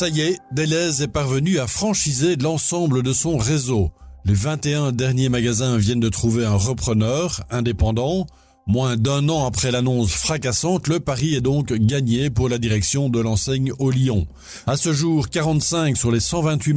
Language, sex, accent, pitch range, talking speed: French, male, French, 115-140 Hz, 170 wpm